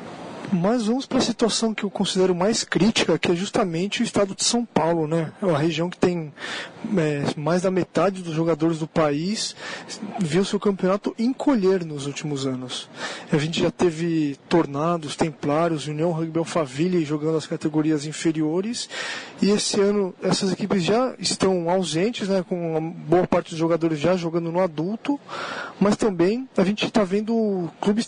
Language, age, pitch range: Portuguese, 20-39, 165-205 Hz